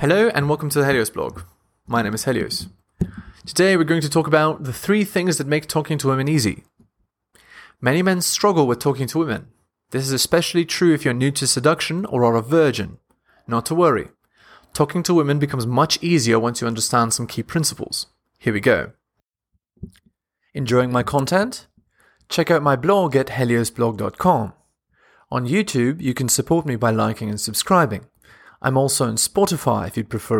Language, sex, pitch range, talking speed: English, male, 120-160 Hz, 180 wpm